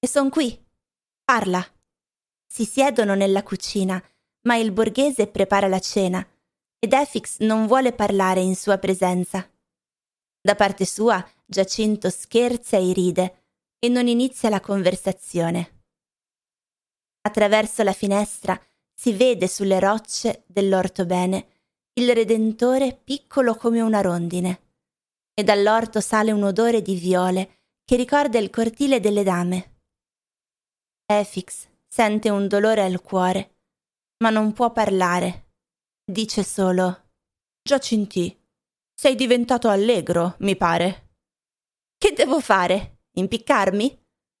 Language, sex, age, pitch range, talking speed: Italian, female, 20-39, 190-230 Hz, 115 wpm